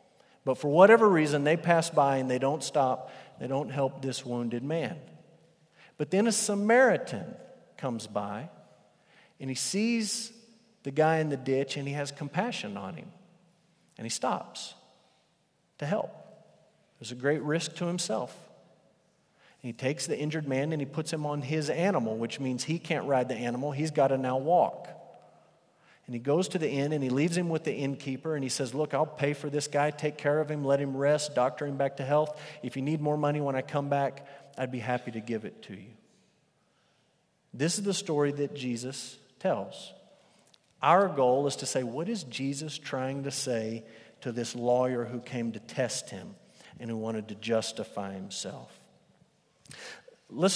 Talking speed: 185 wpm